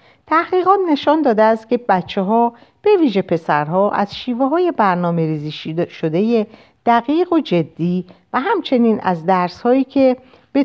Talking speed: 140 wpm